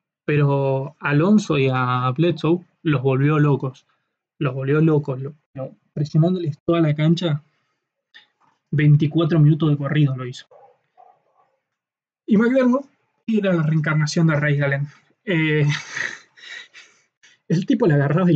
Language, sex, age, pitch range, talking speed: Spanish, male, 20-39, 140-170 Hz, 120 wpm